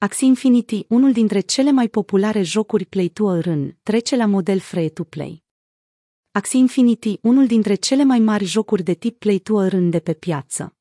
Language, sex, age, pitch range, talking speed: Romanian, female, 30-49, 175-220 Hz, 185 wpm